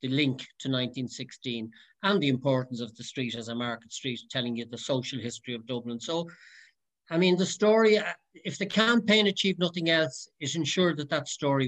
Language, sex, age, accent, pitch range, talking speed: English, male, 60-79, Irish, 120-155 Hz, 190 wpm